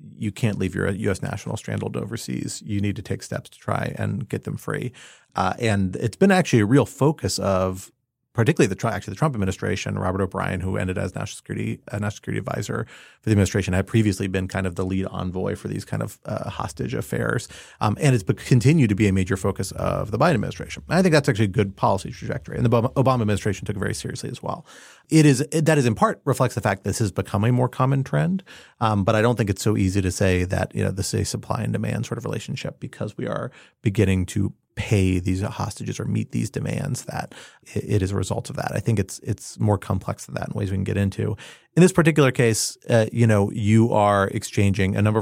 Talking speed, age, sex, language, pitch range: 240 wpm, 30-49, male, English, 95-120 Hz